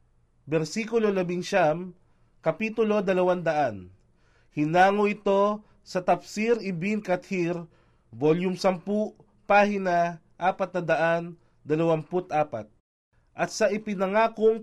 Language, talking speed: Filipino, 80 wpm